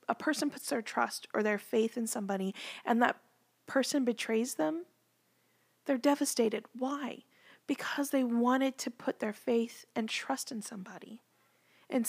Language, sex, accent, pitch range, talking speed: English, female, American, 235-285 Hz, 150 wpm